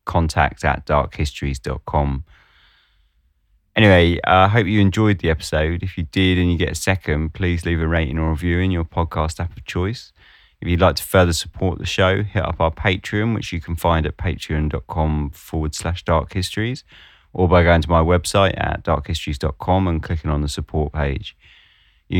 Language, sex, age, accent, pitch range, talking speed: English, male, 20-39, British, 75-90 Hz, 180 wpm